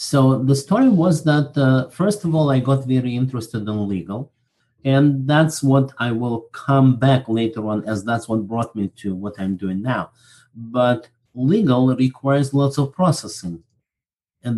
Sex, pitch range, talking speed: male, 115-145 Hz, 170 wpm